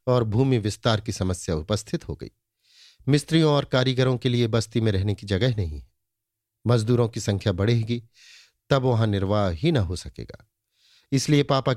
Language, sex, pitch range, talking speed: Hindi, male, 105-125 Hz, 165 wpm